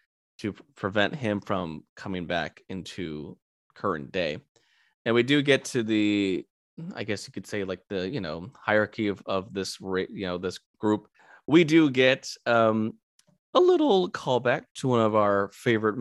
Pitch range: 95-110 Hz